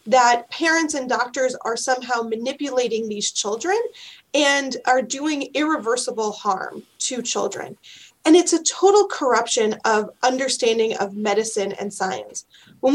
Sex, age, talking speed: female, 30-49, 130 wpm